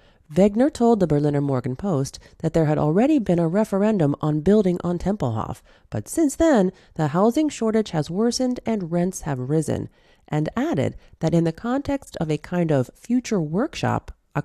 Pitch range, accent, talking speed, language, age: 150-225 Hz, American, 175 wpm, English, 30-49